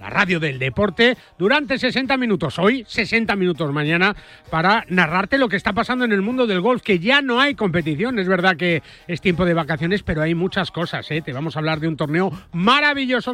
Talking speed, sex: 210 wpm, male